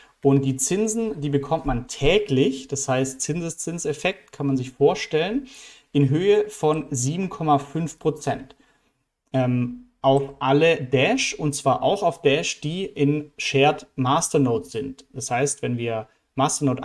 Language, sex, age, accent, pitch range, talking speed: German, male, 30-49, German, 135-160 Hz, 130 wpm